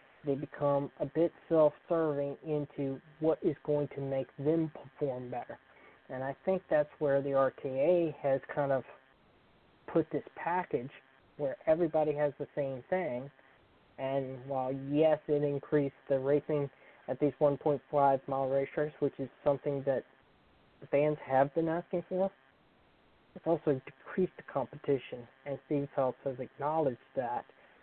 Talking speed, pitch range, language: 140 wpm, 135-150 Hz, English